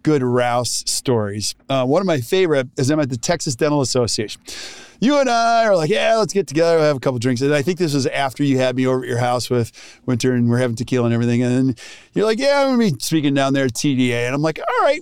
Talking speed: 275 wpm